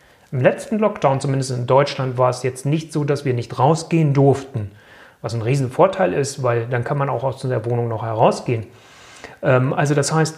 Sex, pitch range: male, 130-170 Hz